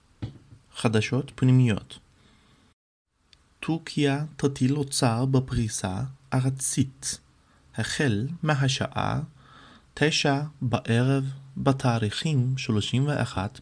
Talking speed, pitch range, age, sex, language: 55 wpm, 110-135 Hz, 30-49, male, Hebrew